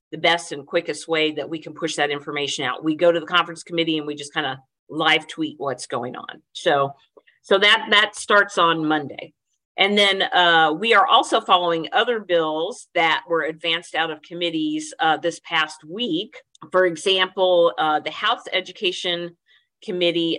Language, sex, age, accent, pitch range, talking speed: English, female, 50-69, American, 160-185 Hz, 180 wpm